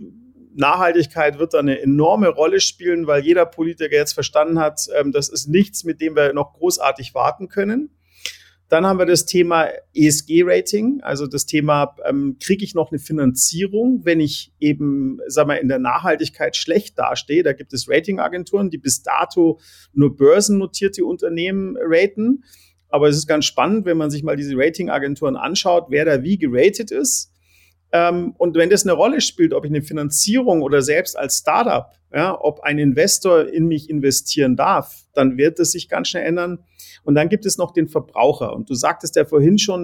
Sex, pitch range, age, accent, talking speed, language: male, 145-195 Hz, 40-59, German, 175 wpm, German